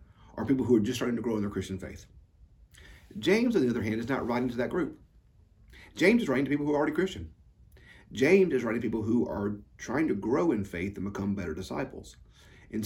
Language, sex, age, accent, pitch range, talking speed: English, male, 40-59, American, 95-130 Hz, 230 wpm